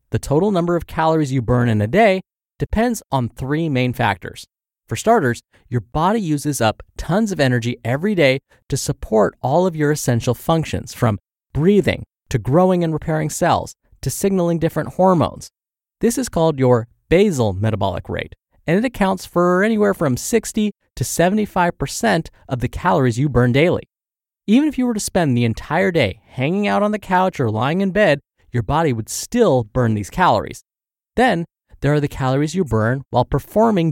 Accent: American